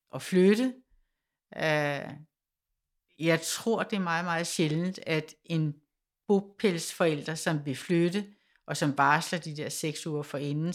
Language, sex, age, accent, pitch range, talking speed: Danish, female, 60-79, native, 155-185 Hz, 130 wpm